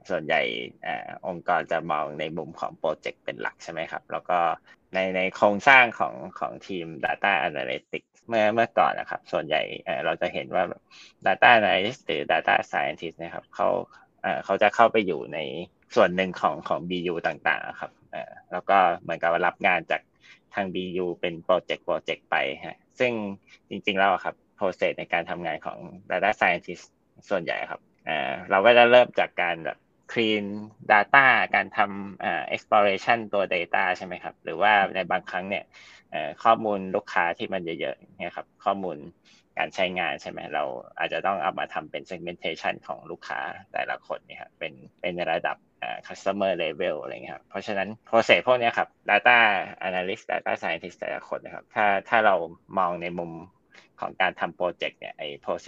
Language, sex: Thai, male